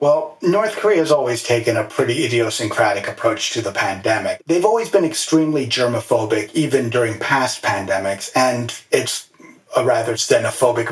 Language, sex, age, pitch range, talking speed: English, male, 30-49, 110-145 Hz, 150 wpm